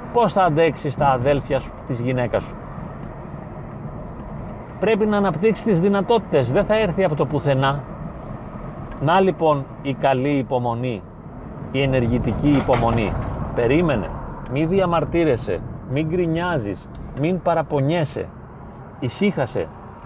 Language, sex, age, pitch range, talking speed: Greek, male, 40-59, 130-180 Hz, 105 wpm